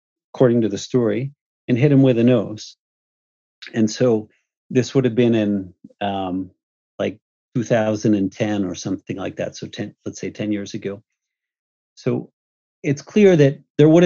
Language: English